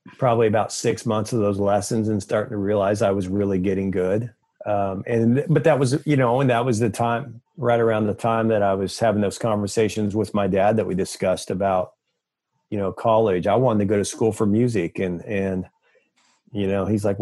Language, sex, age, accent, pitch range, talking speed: English, male, 40-59, American, 100-120 Hz, 215 wpm